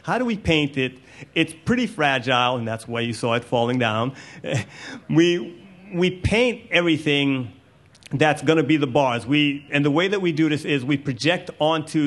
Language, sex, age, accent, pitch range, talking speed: English, male, 30-49, American, 125-150 Hz, 190 wpm